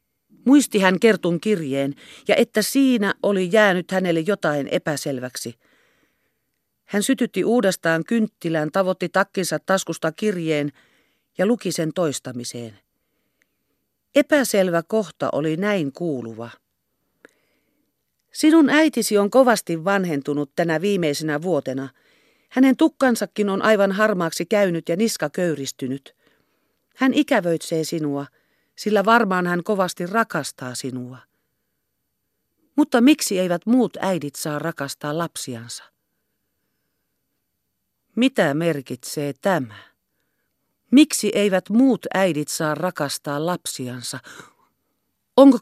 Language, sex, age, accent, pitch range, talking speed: Finnish, female, 40-59, native, 155-230 Hz, 95 wpm